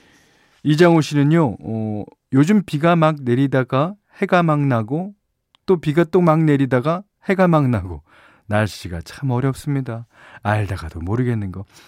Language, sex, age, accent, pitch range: Korean, male, 40-59, native, 100-150 Hz